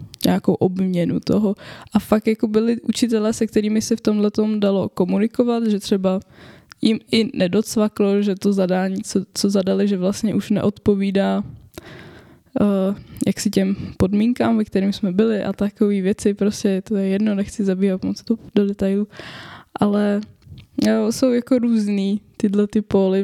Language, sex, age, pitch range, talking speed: Czech, female, 10-29, 195-220 Hz, 155 wpm